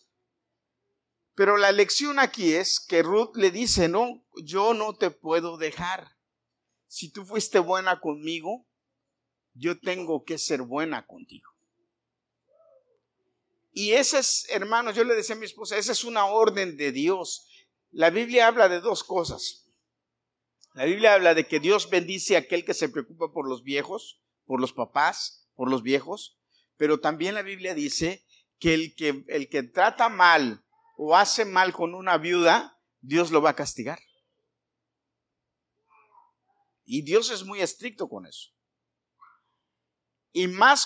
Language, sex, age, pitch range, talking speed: Spanish, male, 50-69, 160-230 Hz, 150 wpm